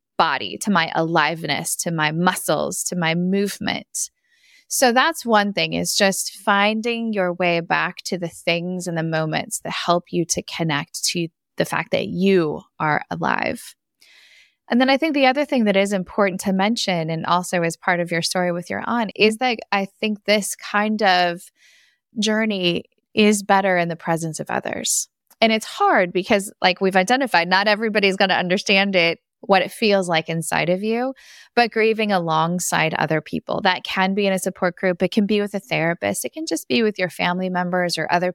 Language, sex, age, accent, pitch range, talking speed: English, female, 10-29, American, 170-210 Hz, 190 wpm